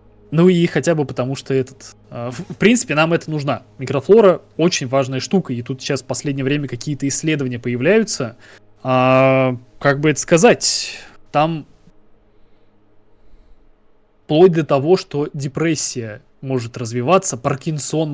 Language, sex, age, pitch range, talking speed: Russian, male, 20-39, 125-155 Hz, 135 wpm